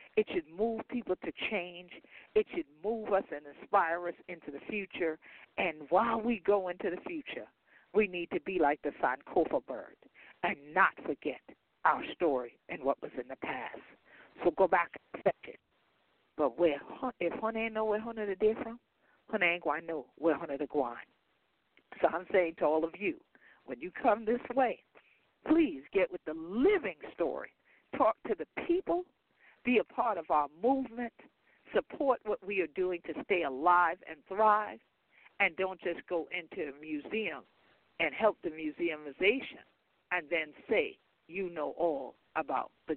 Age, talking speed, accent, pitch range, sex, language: 50-69, 170 wpm, American, 165-225 Hz, female, English